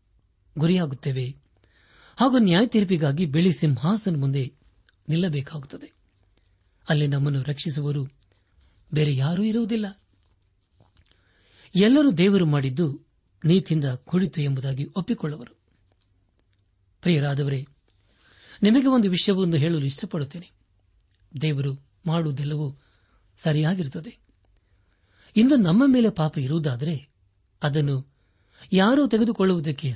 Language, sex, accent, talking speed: Kannada, male, native, 75 wpm